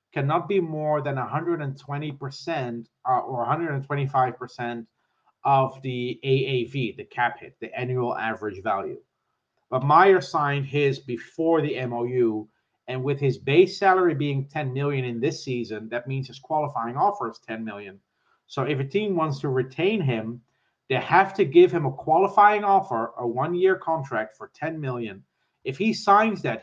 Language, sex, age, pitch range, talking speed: English, male, 30-49, 125-165 Hz, 160 wpm